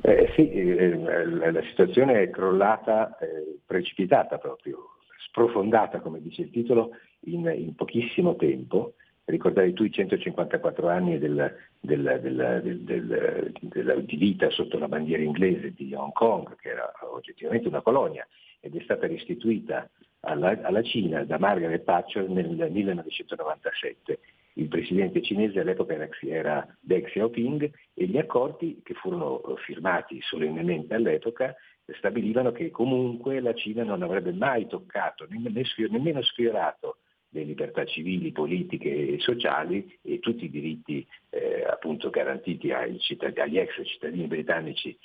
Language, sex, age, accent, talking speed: Italian, male, 50-69, native, 125 wpm